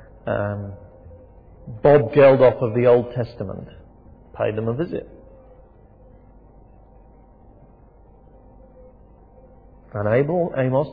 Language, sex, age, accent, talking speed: English, male, 50-69, British, 70 wpm